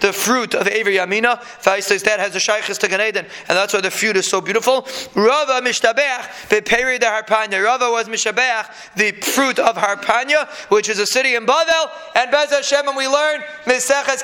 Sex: male